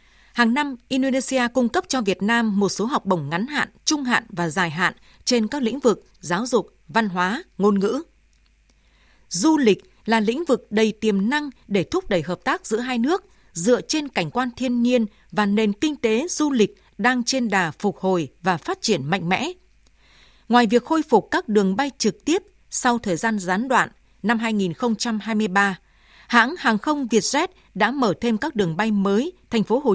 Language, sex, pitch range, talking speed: Vietnamese, female, 200-255 Hz, 195 wpm